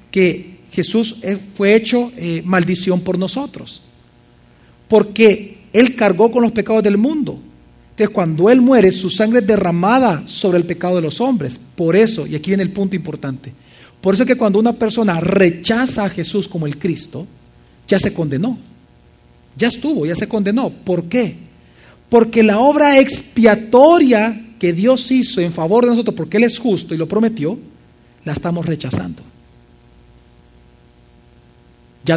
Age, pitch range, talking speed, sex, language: 40-59, 160-230 Hz, 155 wpm, male, Spanish